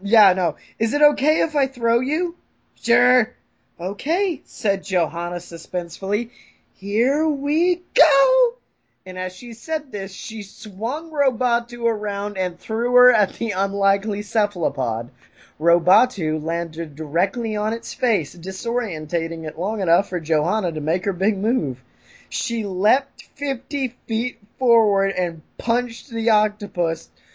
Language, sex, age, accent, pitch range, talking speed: English, male, 20-39, American, 170-235 Hz, 130 wpm